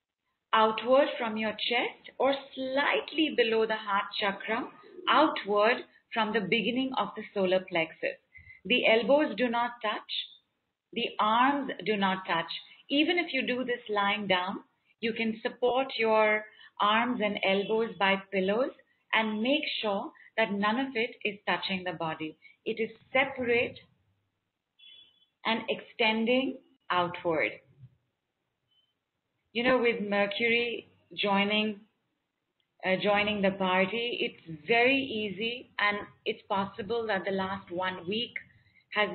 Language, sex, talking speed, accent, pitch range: English, female, 125 wpm, Indian, 200-240 Hz